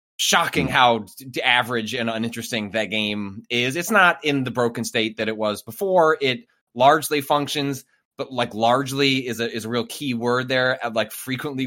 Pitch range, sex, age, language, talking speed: 110-135 Hz, male, 20-39, English, 180 wpm